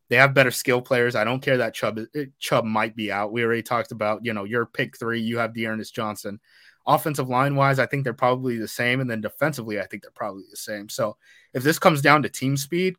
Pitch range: 115-140 Hz